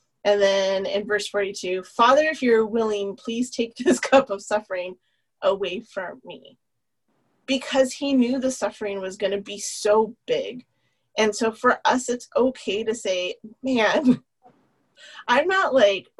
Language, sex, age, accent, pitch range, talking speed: English, female, 30-49, American, 200-255 Hz, 150 wpm